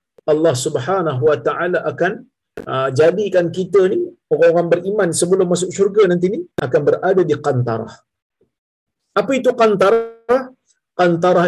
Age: 50-69